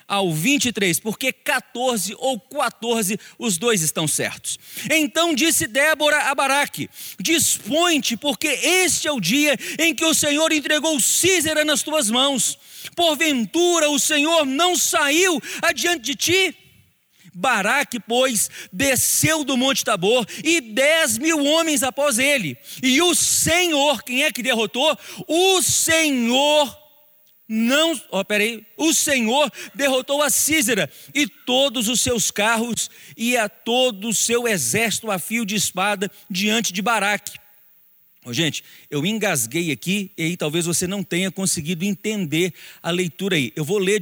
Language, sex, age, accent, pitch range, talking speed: Portuguese, male, 40-59, Brazilian, 195-290 Hz, 140 wpm